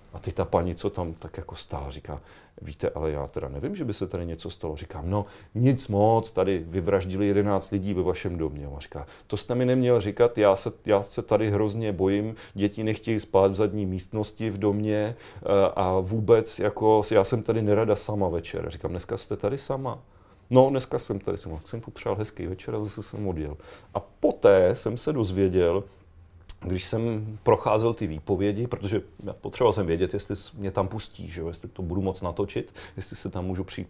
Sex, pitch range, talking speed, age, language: male, 95-110 Hz, 200 wpm, 40-59, Czech